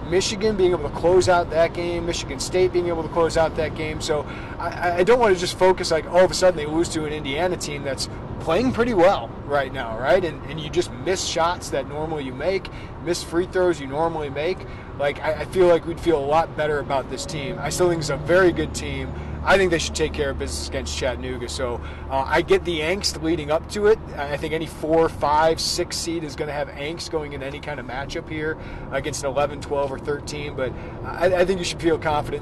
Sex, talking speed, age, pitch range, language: male, 245 wpm, 30-49, 130-165 Hz, English